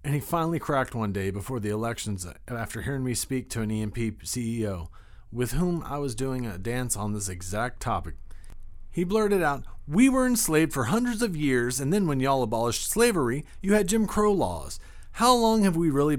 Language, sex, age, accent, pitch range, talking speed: English, male, 40-59, American, 105-160 Hz, 200 wpm